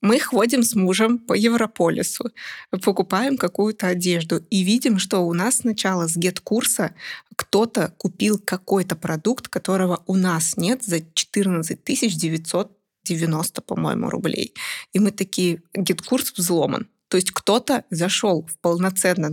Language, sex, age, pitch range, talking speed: Russian, female, 20-39, 185-230 Hz, 125 wpm